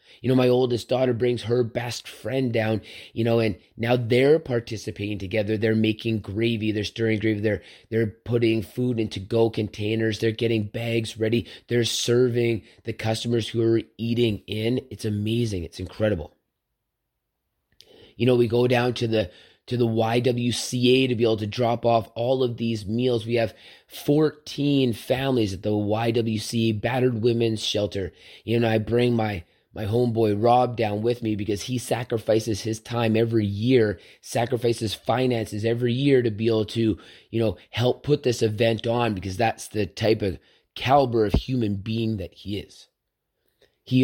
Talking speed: 165 wpm